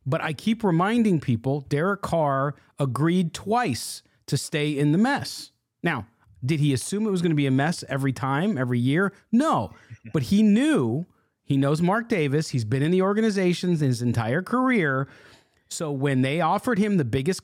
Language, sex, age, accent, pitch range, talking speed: English, male, 40-59, American, 135-195 Hz, 180 wpm